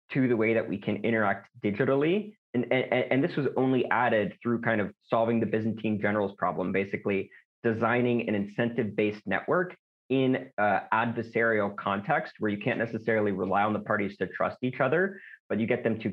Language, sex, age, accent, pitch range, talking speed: English, male, 30-49, American, 105-125 Hz, 180 wpm